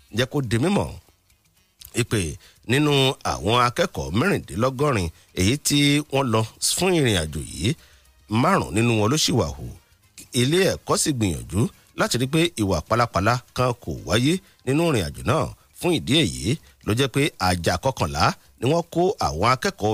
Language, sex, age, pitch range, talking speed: English, male, 50-69, 100-150 Hz, 140 wpm